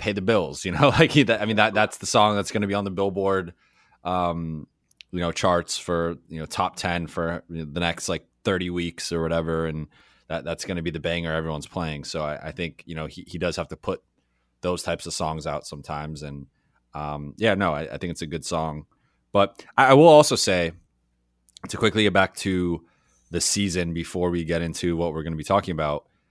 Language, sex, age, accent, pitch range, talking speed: English, male, 20-39, American, 80-110 Hz, 230 wpm